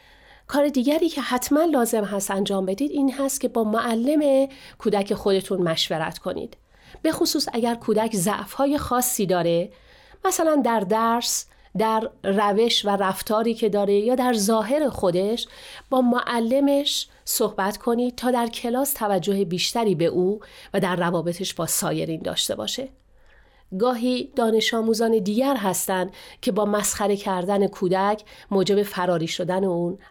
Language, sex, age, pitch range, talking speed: Persian, female, 40-59, 195-255 Hz, 135 wpm